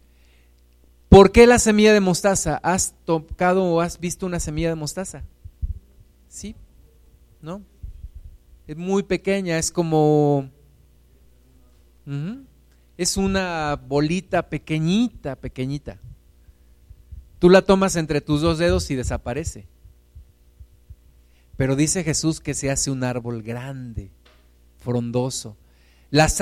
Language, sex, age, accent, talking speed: Spanish, male, 50-69, Mexican, 110 wpm